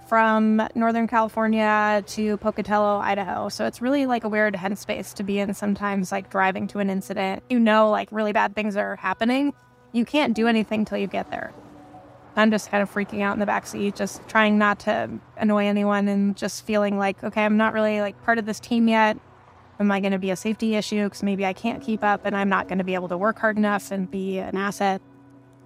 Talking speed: 220 wpm